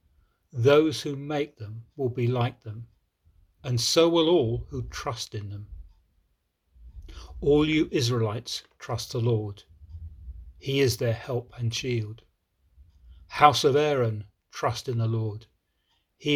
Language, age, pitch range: English, 40-59, 105-135 Hz